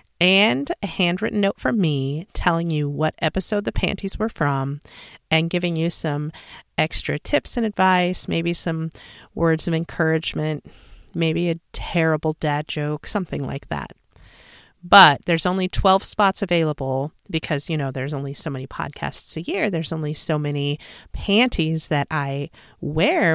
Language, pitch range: English, 150-180 Hz